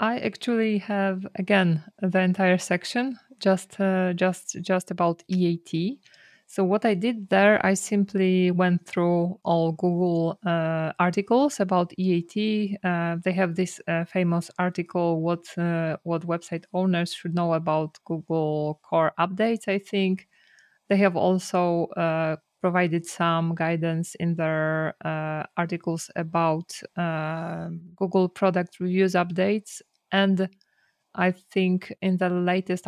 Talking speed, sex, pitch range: 130 wpm, female, 170-195 Hz